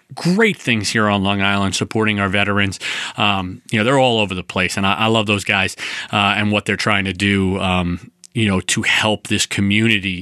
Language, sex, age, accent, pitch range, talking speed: English, male, 30-49, American, 100-120 Hz, 215 wpm